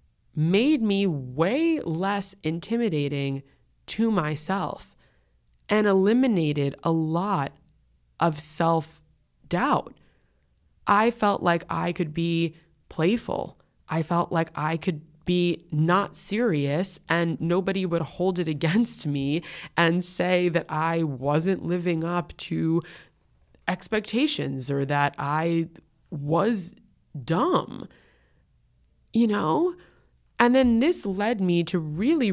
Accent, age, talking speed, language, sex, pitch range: American, 20-39, 110 wpm, English, female, 145-185 Hz